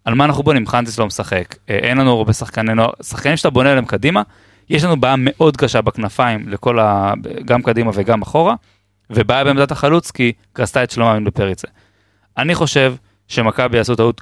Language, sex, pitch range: Hebrew, male, 110-145 Hz